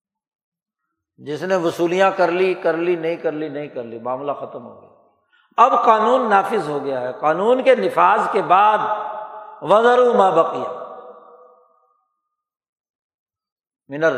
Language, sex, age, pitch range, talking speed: Urdu, male, 60-79, 170-250 Hz, 135 wpm